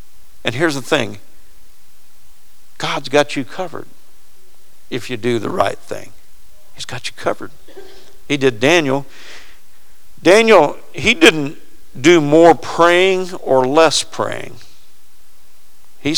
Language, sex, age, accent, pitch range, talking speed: English, male, 50-69, American, 105-165 Hz, 115 wpm